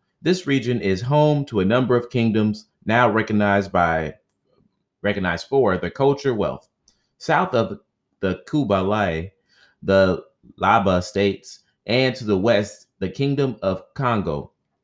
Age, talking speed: 30-49, 130 wpm